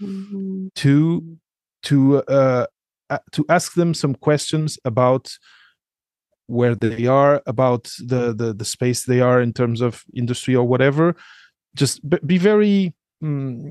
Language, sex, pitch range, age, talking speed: English, male, 125-170 Hz, 30-49, 125 wpm